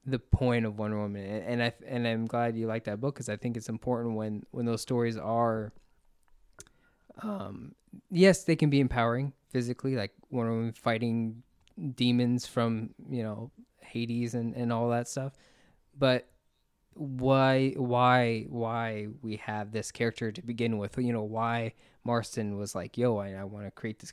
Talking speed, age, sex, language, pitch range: 175 wpm, 20-39, male, English, 110-130 Hz